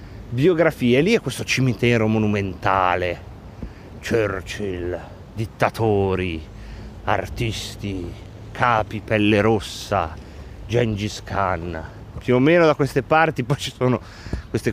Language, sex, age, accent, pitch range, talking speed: Italian, male, 30-49, native, 105-155 Hz, 100 wpm